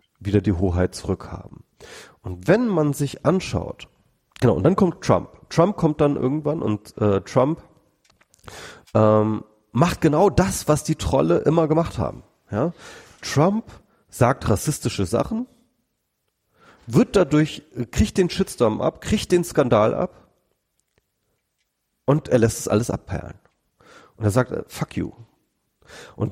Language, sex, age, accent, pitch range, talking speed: German, male, 40-59, German, 105-150 Hz, 135 wpm